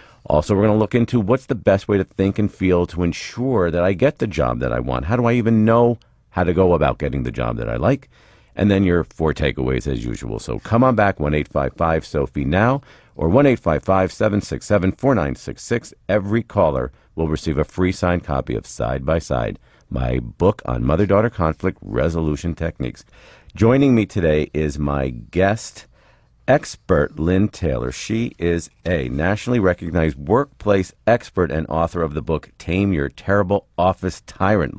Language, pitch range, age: English, 75-100 Hz, 50-69